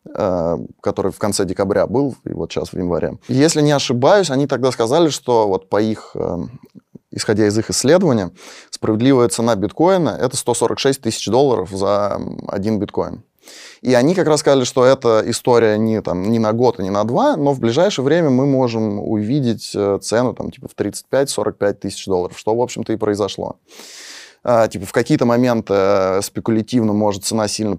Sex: male